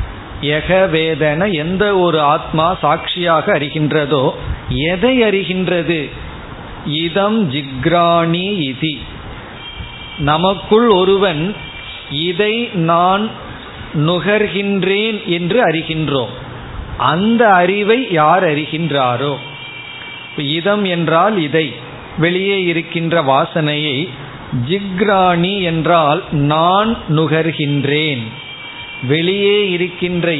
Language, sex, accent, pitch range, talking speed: Tamil, male, native, 140-180 Hz, 65 wpm